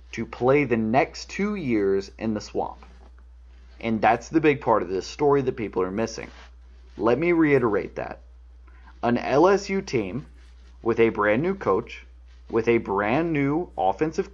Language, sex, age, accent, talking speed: English, male, 30-49, American, 160 wpm